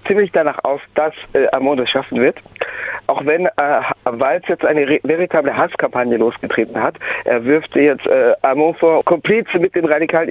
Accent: German